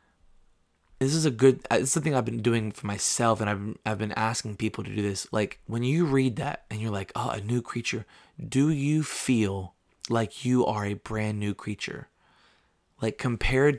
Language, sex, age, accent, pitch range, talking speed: English, male, 20-39, American, 105-135 Hz, 190 wpm